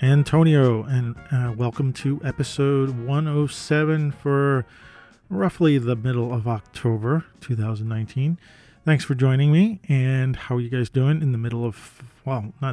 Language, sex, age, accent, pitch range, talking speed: English, male, 40-59, American, 125-155 Hz, 140 wpm